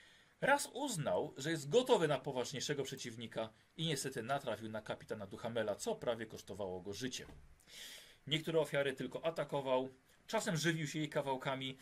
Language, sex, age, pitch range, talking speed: Polish, male, 40-59, 125-155 Hz, 140 wpm